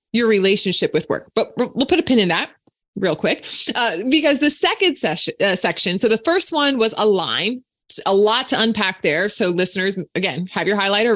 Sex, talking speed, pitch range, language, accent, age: female, 205 wpm, 190-265 Hz, English, American, 20-39